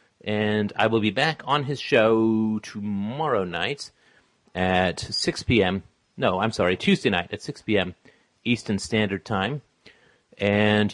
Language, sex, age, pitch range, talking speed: English, male, 40-59, 100-125 Hz, 135 wpm